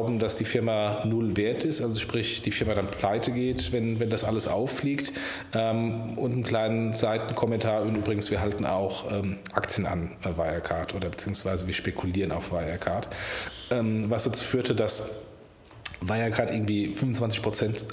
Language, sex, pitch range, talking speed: German, male, 105-120 Hz, 160 wpm